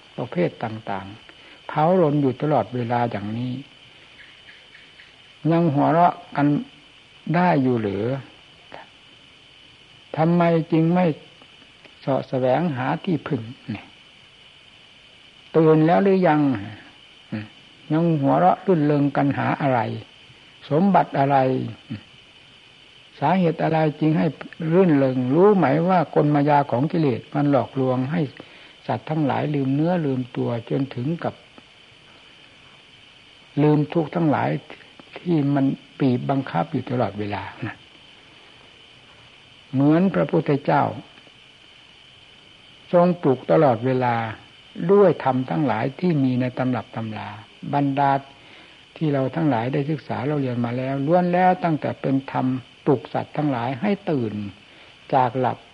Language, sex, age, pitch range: Thai, male, 60-79, 125-155 Hz